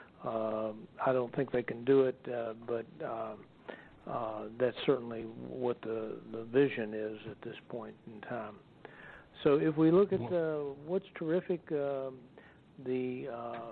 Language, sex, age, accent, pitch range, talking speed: English, male, 60-79, American, 125-150 Hz, 150 wpm